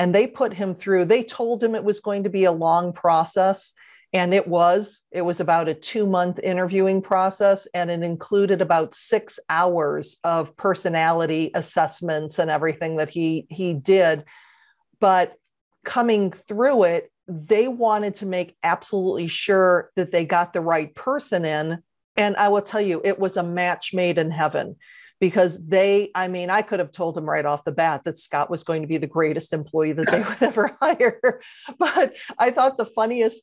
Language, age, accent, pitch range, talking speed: English, 40-59, American, 170-215 Hz, 185 wpm